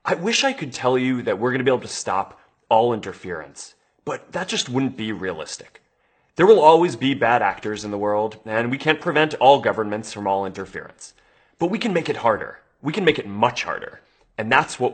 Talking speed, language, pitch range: 220 wpm, English, 105-140 Hz